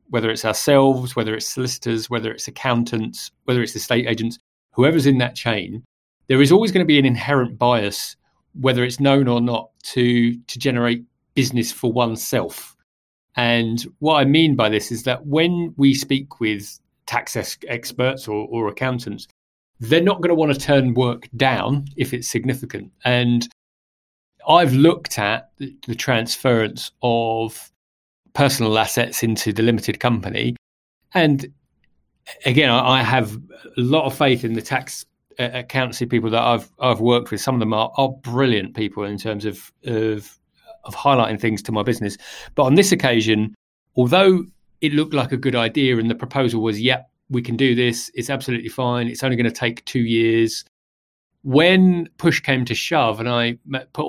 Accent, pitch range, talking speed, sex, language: British, 115-135 Hz, 170 wpm, male, English